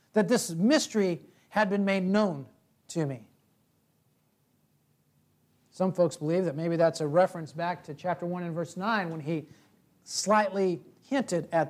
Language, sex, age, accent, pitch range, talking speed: English, male, 50-69, American, 155-205 Hz, 150 wpm